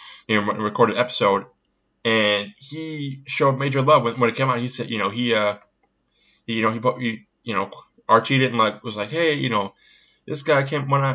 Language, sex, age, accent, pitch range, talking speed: English, male, 20-39, American, 105-135 Hz, 220 wpm